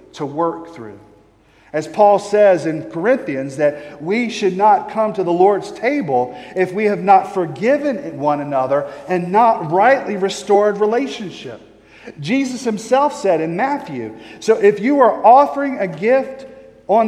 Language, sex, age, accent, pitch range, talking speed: English, male, 40-59, American, 185-250 Hz, 150 wpm